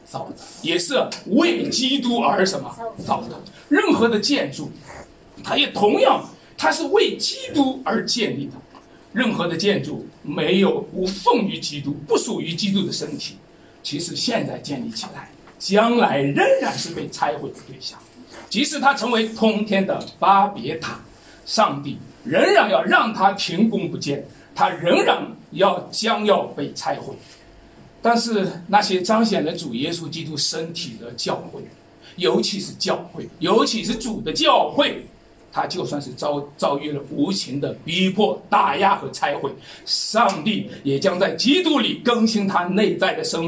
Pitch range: 175-235 Hz